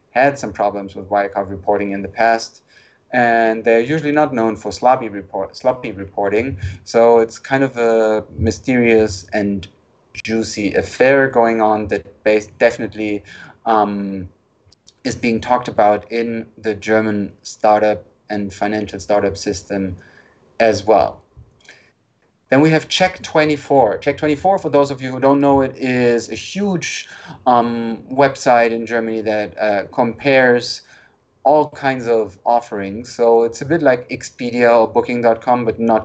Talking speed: 140 wpm